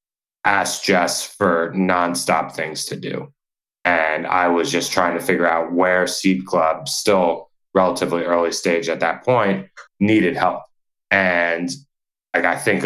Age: 20-39